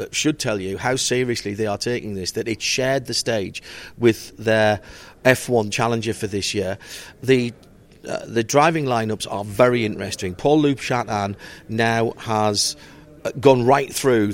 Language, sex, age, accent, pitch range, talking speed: English, male, 40-59, British, 105-125 Hz, 150 wpm